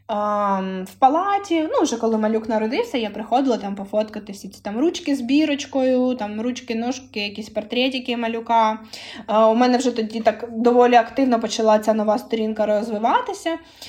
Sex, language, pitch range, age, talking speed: female, Ukrainian, 195-240 Hz, 20-39, 145 wpm